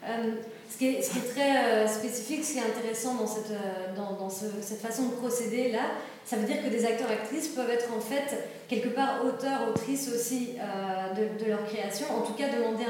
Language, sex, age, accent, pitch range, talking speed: French, female, 20-39, French, 225-260 Hz, 235 wpm